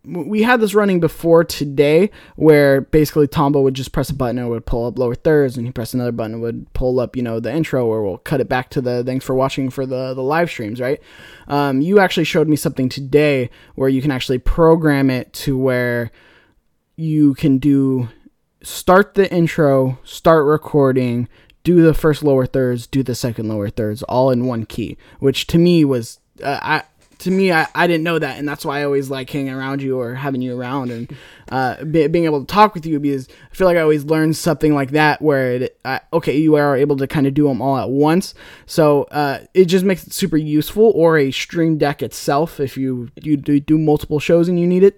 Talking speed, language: 225 wpm, English